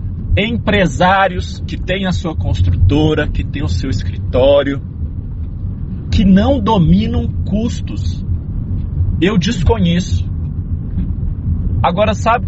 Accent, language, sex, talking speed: Brazilian, Portuguese, male, 90 wpm